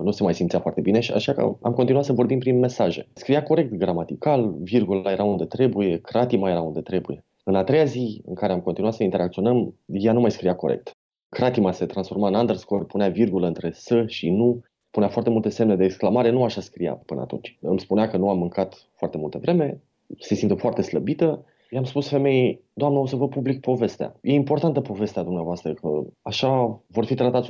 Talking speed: 205 wpm